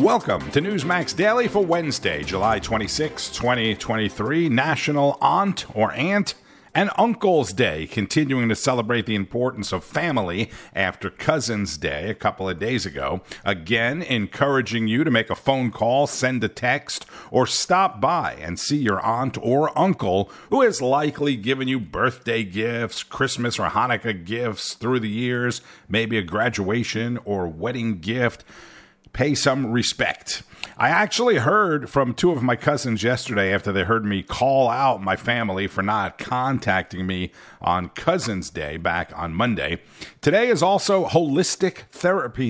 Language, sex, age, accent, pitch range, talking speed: English, male, 50-69, American, 105-145 Hz, 150 wpm